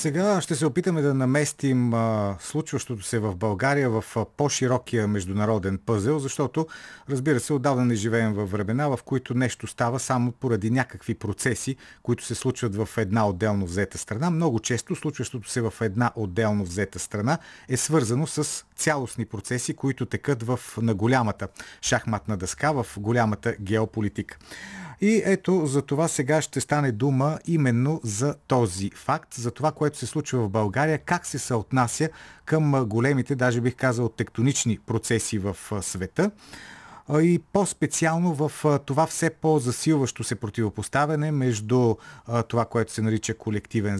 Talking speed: 145 wpm